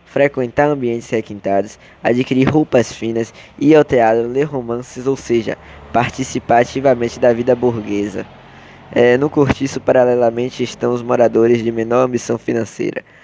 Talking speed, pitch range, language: 125 wpm, 115-125 Hz, Portuguese